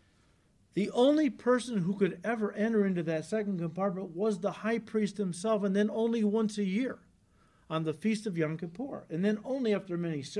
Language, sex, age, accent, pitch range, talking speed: English, male, 50-69, American, 175-230 Hz, 190 wpm